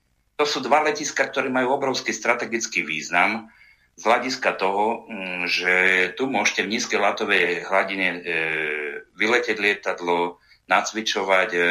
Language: Slovak